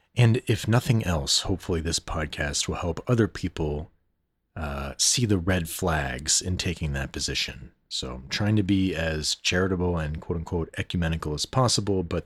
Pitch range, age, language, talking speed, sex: 80-100 Hz, 30-49, English, 160 wpm, male